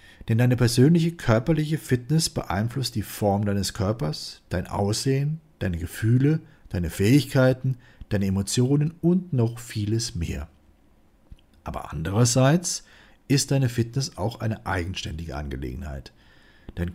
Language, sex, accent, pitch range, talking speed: German, male, German, 100-140 Hz, 115 wpm